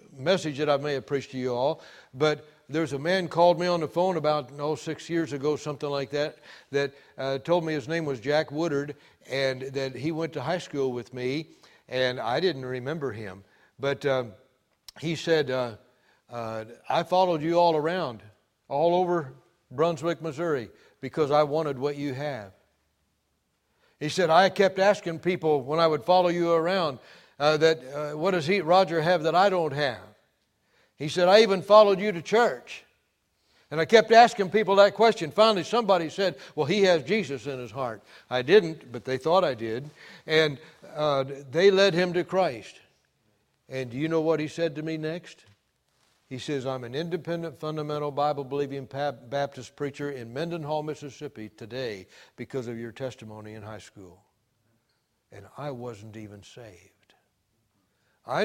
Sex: male